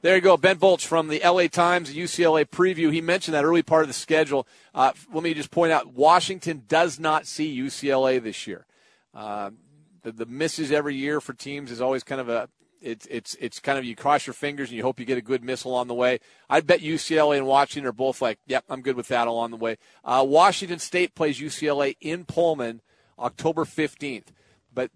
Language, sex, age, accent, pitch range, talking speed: English, male, 40-59, American, 120-155 Hz, 220 wpm